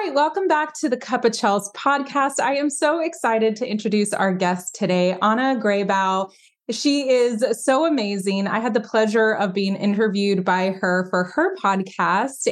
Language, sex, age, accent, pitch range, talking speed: English, female, 20-39, American, 195-255 Hz, 170 wpm